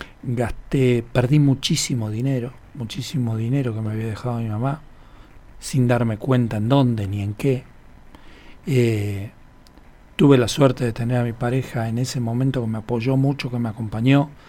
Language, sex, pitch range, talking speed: Spanish, male, 115-135 Hz, 160 wpm